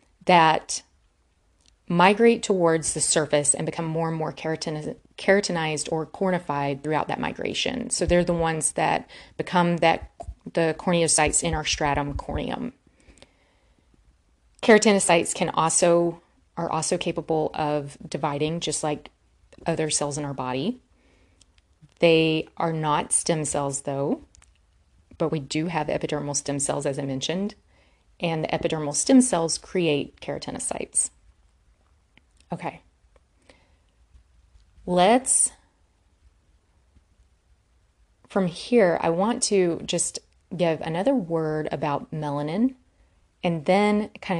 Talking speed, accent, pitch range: 110 wpm, American, 105-170 Hz